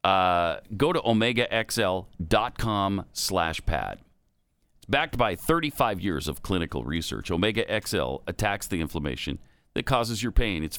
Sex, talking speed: male, 135 wpm